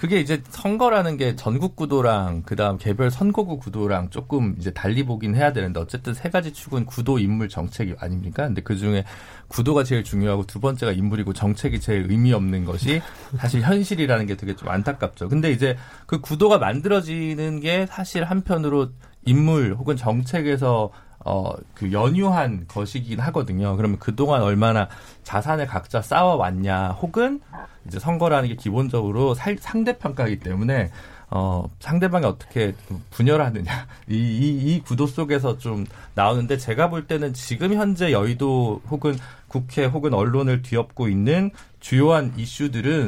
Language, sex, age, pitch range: Korean, male, 40-59, 105-150 Hz